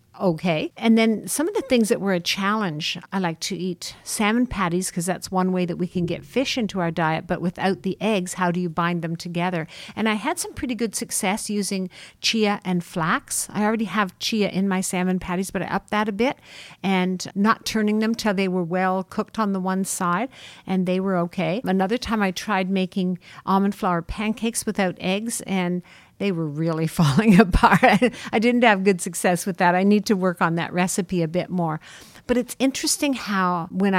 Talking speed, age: 210 wpm, 50-69